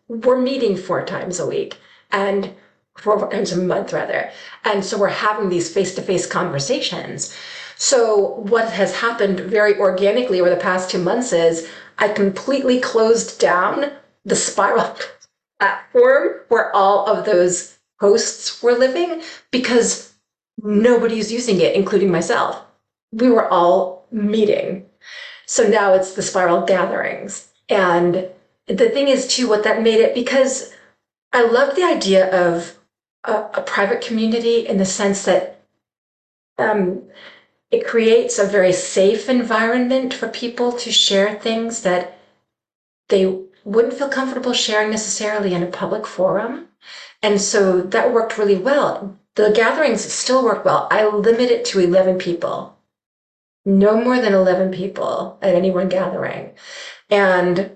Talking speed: 140 wpm